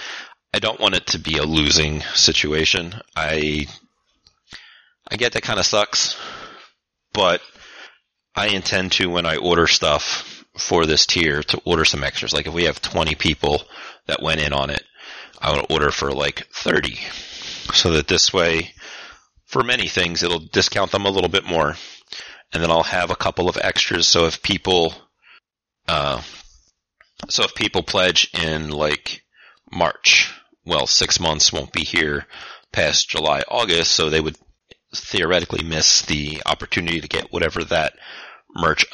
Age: 30-49